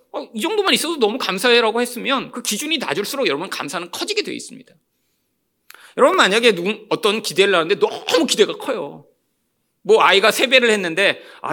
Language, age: Korean, 40-59